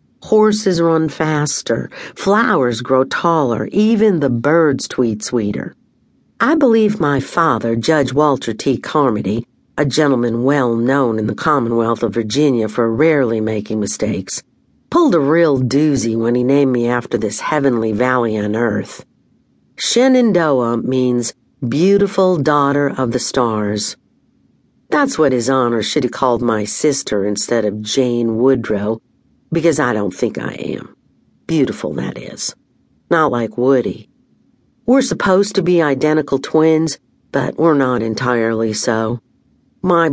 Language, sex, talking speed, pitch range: English, female, 135 wpm, 115-155 Hz